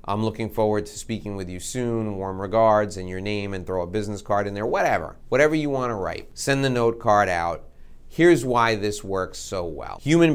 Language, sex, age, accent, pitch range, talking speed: English, male, 30-49, American, 95-125 Hz, 215 wpm